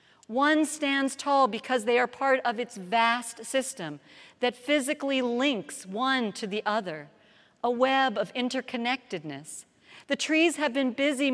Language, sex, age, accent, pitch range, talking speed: English, female, 50-69, American, 175-240 Hz, 145 wpm